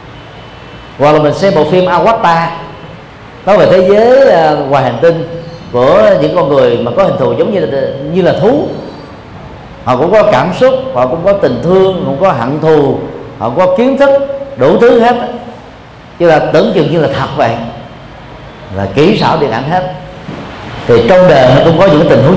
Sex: male